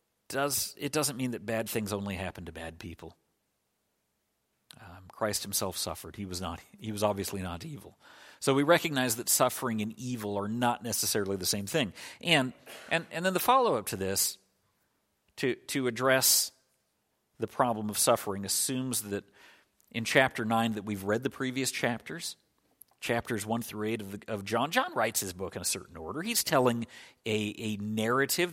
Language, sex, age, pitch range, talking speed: English, male, 50-69, 105-130 Hz, 180 wpm